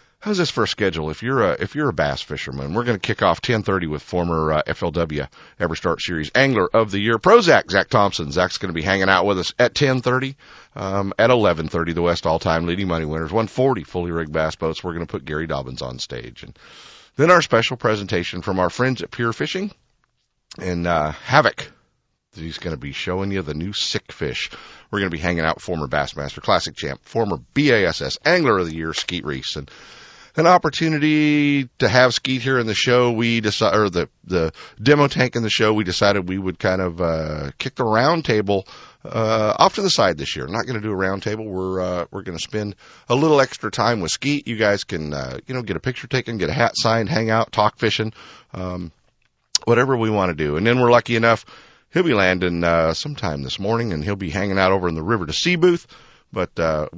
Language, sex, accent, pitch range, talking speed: English, male, American, 85-115 Hz, 225 wpm